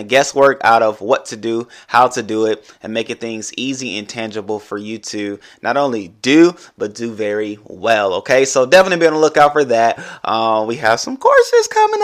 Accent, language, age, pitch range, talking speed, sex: American, English, 20-39, 110-150 Hz, 205 wpm, male